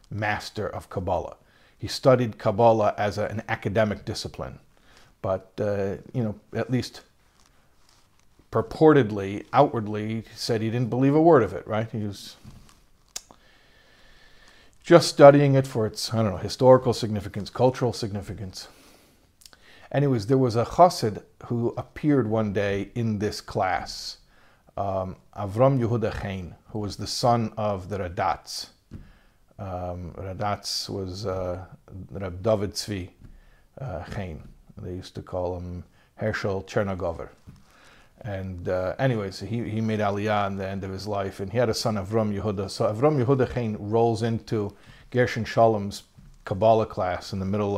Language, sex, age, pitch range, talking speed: English, male, 50-69, 100-120 Hz, 145 wpm